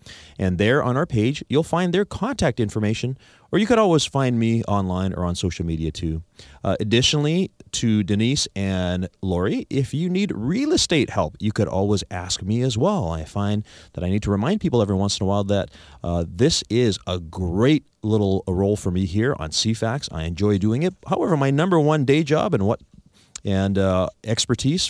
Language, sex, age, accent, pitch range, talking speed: English, male, 30-49, American, 95-140 Hz, 200 wpm